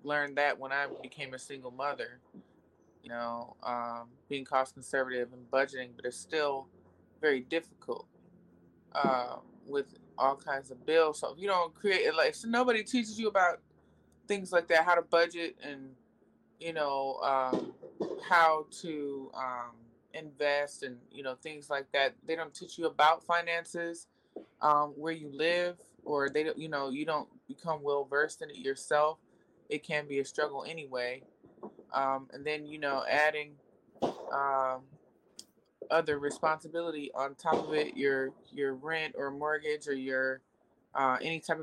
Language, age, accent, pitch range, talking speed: English, 20-39, American, 135-165 Hz, 160 wpm